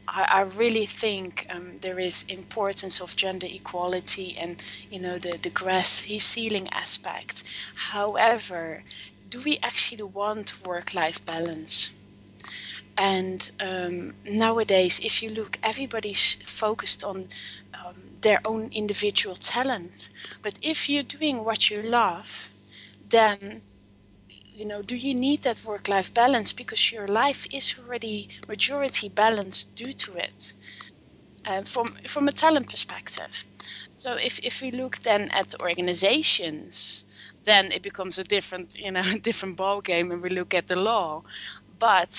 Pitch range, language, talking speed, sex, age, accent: 180-220 Hz, English, 140 wpm, female, 20-39, Dutch